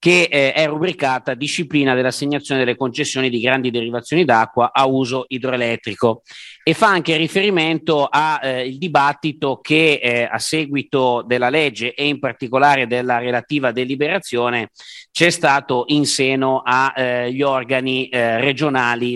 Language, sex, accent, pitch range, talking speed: Italian, male, native, 125-150 Hz, 135 wpm